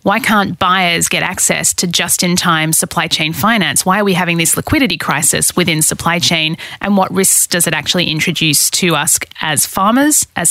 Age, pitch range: 30-49, 165-205 Hz